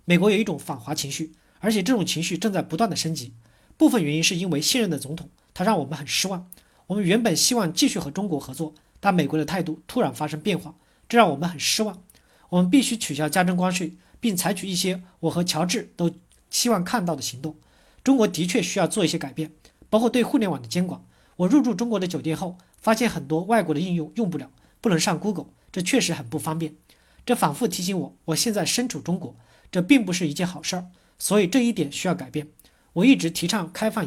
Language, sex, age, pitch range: Chinese, male, 40-59, 155-210 Hz